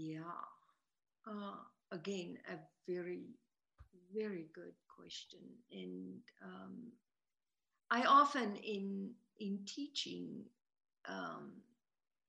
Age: 50-69